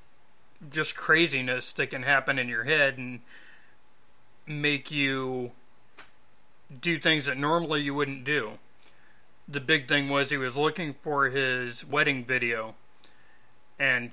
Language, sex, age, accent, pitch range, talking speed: English, male, 30-49, American, 130-145 Hz, 125 wpm